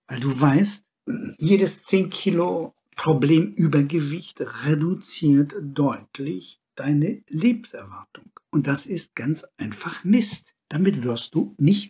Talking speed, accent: 105 wpm, German